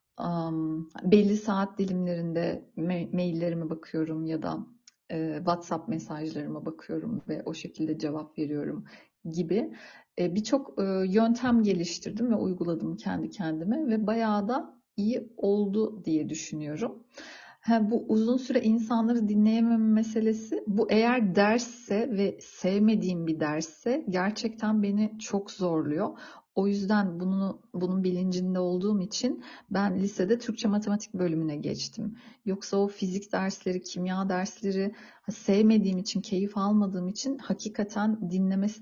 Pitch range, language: 180-220 Hz, Turkish